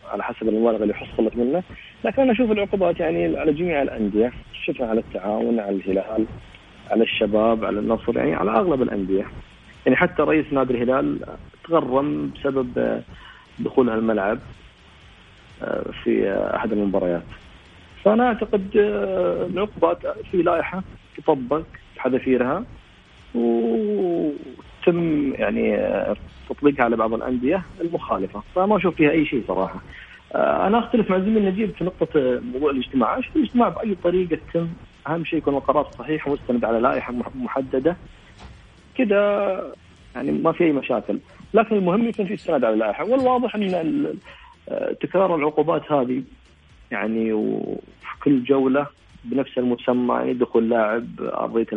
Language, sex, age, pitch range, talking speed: Arabic, male, 40-59, 110-180 Hz, 125 wpm